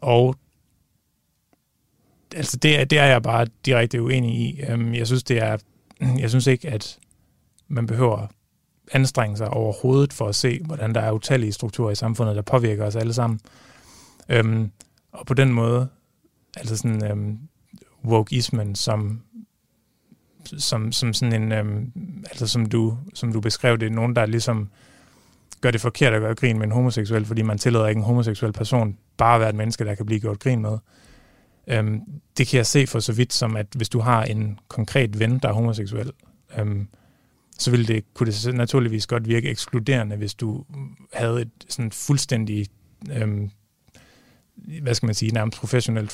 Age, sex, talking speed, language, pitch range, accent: 30-49, male, 175 wpm, Danish, 110-125 Hz, native